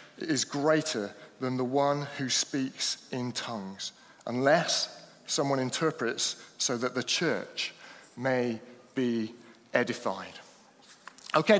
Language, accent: English, British